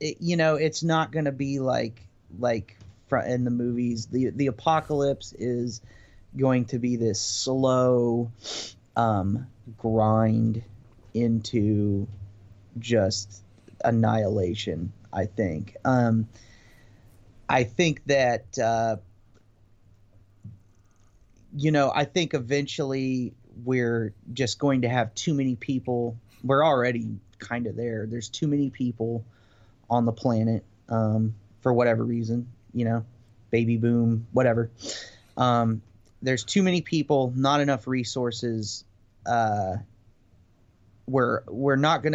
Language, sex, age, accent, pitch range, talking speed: English, male, 30-49, American, 110-125 Hz, 115 wpm